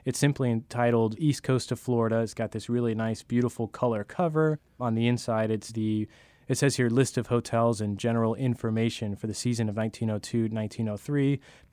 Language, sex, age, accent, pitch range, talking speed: English, male, 20-39, American, 110-125 Hz, 175 wpm